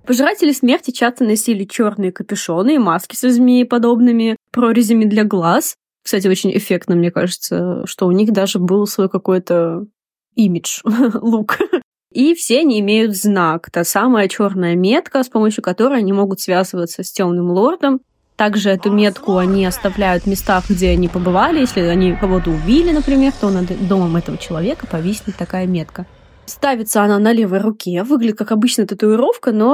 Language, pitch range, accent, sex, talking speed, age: Russian, 185-240 Hz, native, female, 155 wpm, 20-39